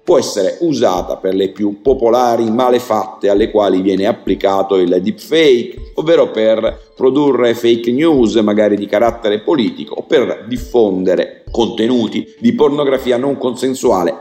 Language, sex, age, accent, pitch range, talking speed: Italian, male, 50-69, native, 110-130 Hz, 130 wpm